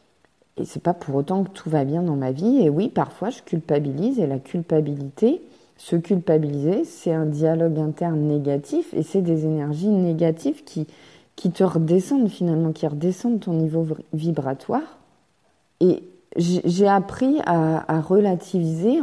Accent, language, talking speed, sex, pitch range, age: French, French, 155 wpm, female, 150-190 Hz, 30-49